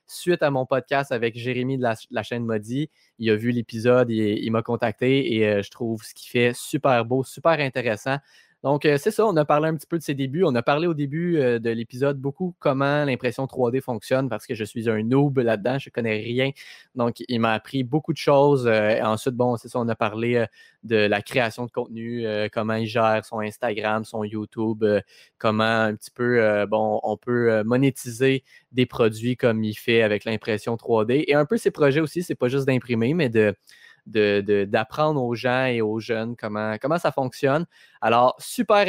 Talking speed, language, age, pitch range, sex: 205 wpm, French, 20-39, 115-140 Hz, male